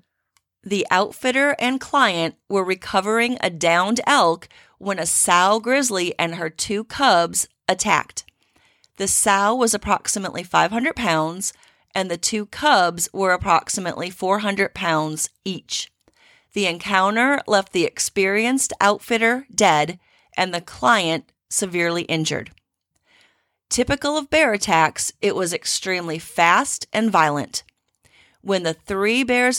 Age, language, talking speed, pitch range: 30-49, English, 120 wpm, 170-230 Hz